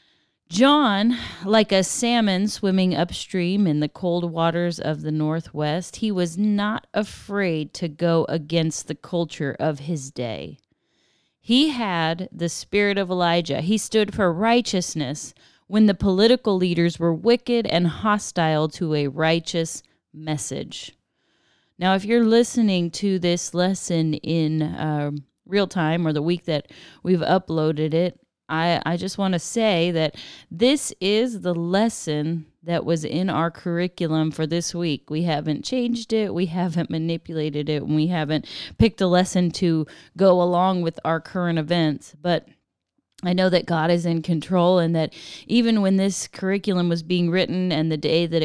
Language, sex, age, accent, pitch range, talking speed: English, female, 30-49, American, 160-195 Hz, 155 wpm